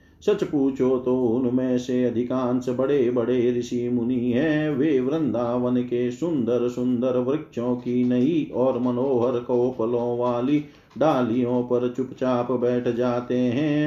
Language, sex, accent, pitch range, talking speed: Hindi, male, native, 120-140 Hz, 125 wpm